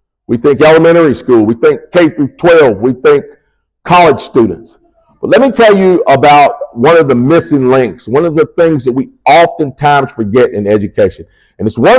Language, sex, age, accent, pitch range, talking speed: English, male, 50-69, American, 130-175 Hz, 185 wpm